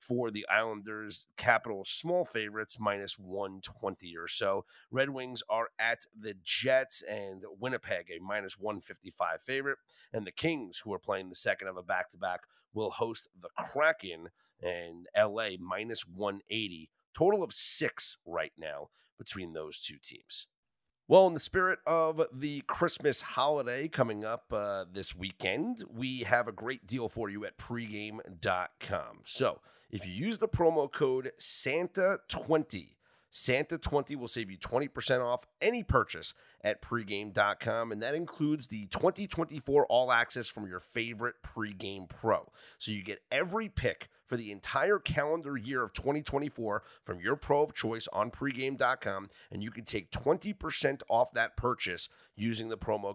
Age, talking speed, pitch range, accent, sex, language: 30-49, 150 wpm, 105-145 Hz, American, male, English